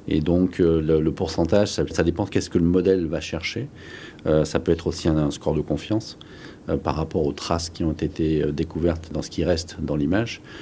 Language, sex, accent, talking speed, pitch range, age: French, male, French, 220 wpm, 80-95 Hz, 40-59